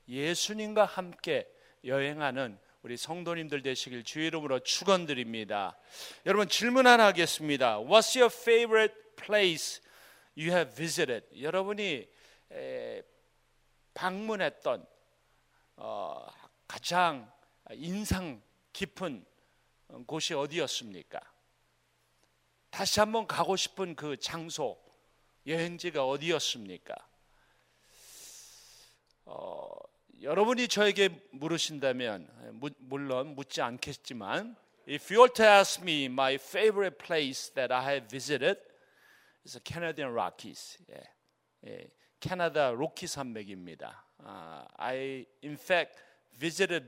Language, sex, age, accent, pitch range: Korean, male, 40-59, native, 135-205 Hz